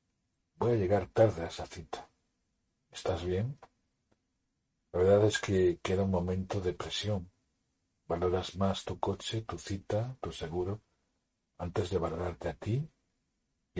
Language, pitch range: Spanish, 85-105 Hz